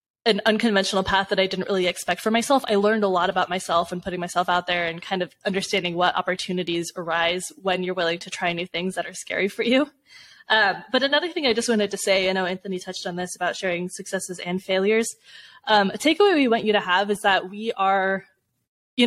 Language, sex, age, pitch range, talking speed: English, female, 20-39, 185-225 Hz, 230 wpm